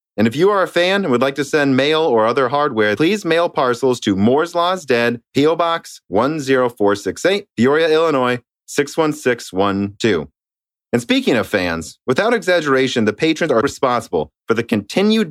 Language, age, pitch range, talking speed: English, 30-49, 110-150 Hz, 160 wpm